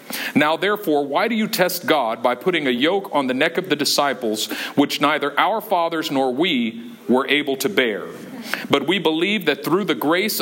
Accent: American